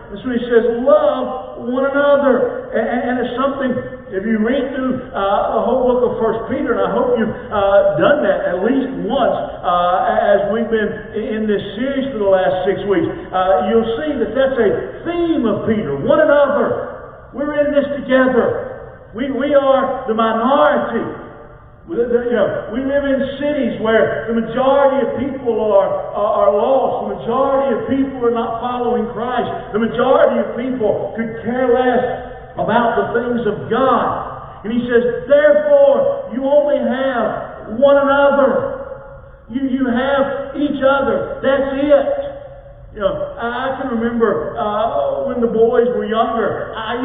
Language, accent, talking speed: English, American, 160 wpm